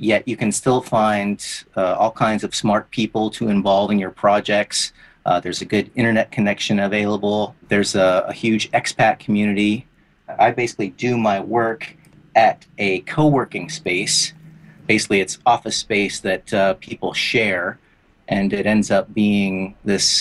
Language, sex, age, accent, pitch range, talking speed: English, male, 30-49, American, 100-115 Hz, 155 wpm